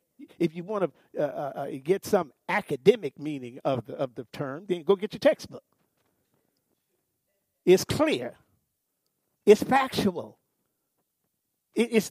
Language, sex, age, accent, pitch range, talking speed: English, male, 50-69, American, 195-290 Hz, 125 wpm